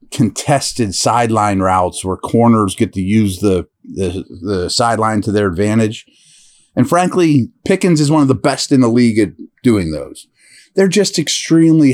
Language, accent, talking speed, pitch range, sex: English, American, 160 wpm, 105-135 Hz, male